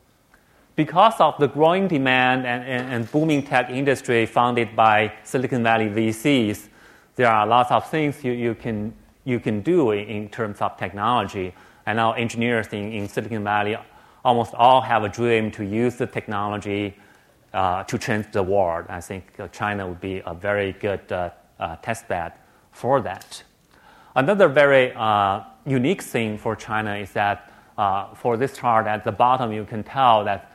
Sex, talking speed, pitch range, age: male, 165 wpm, 105-120 Hz, 30-49